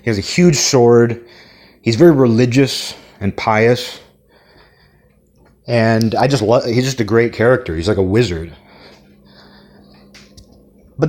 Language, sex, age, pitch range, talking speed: English, male, 30-49, 105-125 Hz, 125 wpm